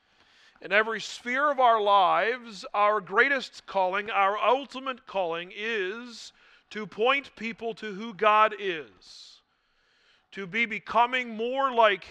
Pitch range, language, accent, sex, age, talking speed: 190-245 Hz, English, American, male, 40-59, 125 wpm